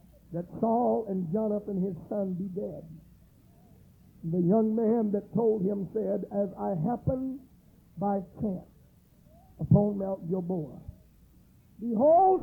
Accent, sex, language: American, male, English